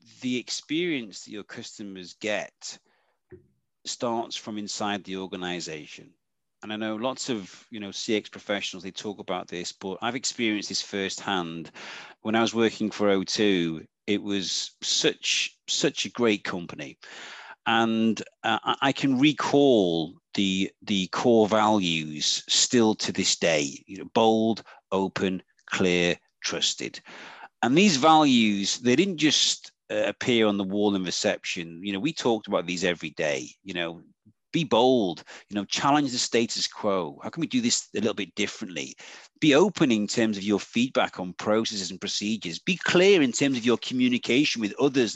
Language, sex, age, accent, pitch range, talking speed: English, male, 40-59, British, 95-125 Hz, 160 wpm